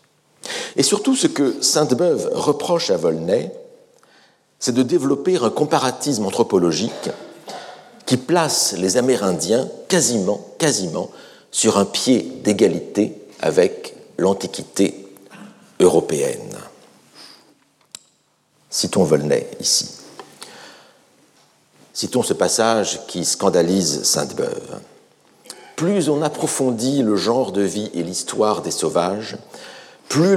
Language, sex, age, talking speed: French, male, 60-79, 95 wpm